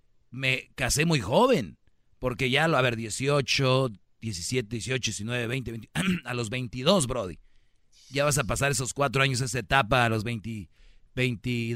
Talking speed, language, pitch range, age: 165 wpm, Spanish, 120-150 Hz, 40-59